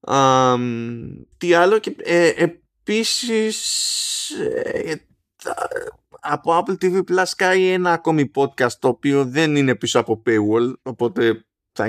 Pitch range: 115-170 Hz